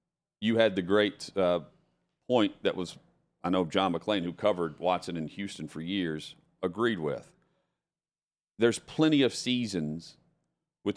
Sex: male